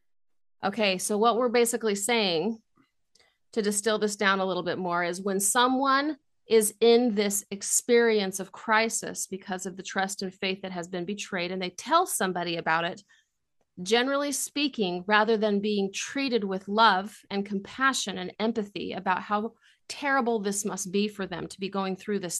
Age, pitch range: 30-49, 185-225 Hz